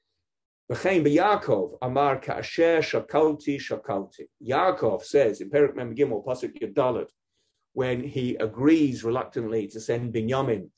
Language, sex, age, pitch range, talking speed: English, male, 50-69, 120-180 Hz, 85 wpm